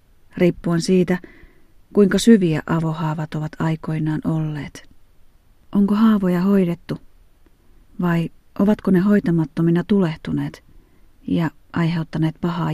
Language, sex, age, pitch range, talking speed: Finnish, female, 40-59, 155-185 Hz, 90 wpm